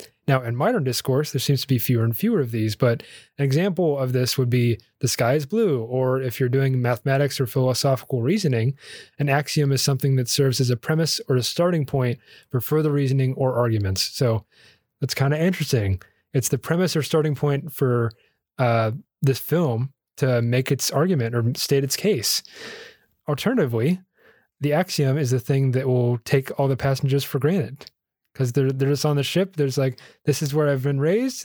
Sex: male